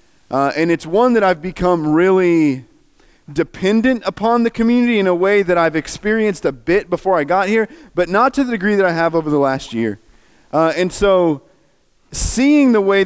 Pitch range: 115-165 Hz